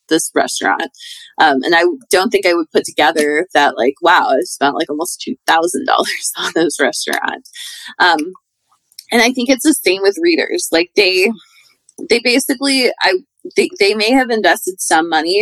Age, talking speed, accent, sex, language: 20-39, 165 wpm, American, female, English